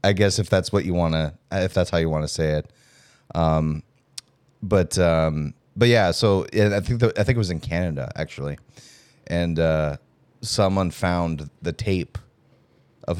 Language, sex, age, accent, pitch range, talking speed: English, male, 30-49, American, 80-110 Hz, 175 wpm